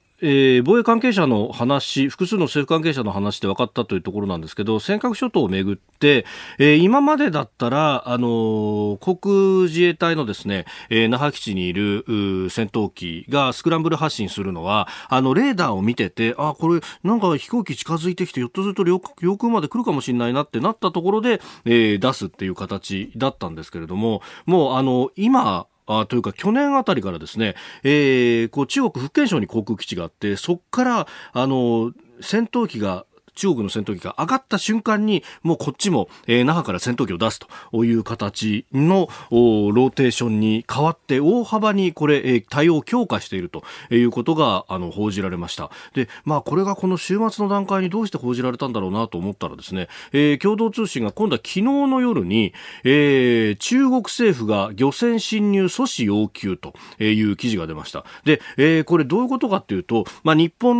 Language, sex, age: Japanese, male, 40-59